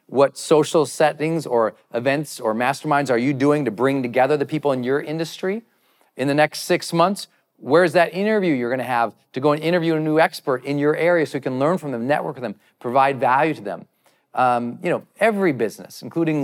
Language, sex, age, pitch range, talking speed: English, male, 40-59, 120-155 Hz, 215 wpm